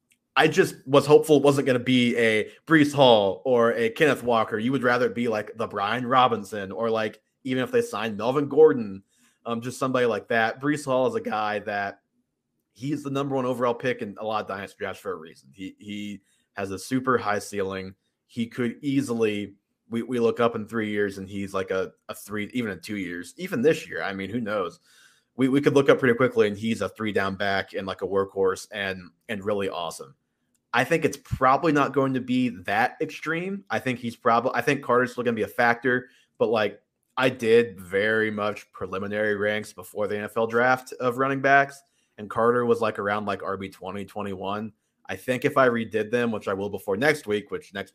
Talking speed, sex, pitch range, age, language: 220 wpm, male, 100-130 Hz, 30-49, English